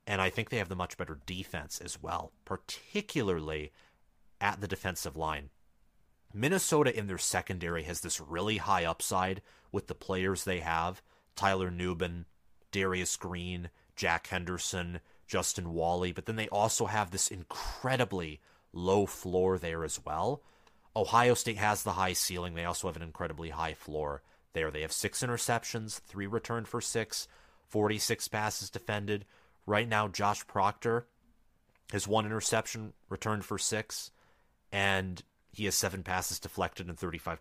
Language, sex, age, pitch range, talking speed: English, male, 30-49, 85-110 Hz, 150 wpm